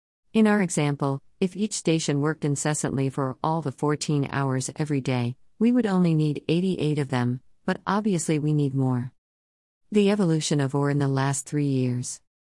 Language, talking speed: Italian, 170 wpm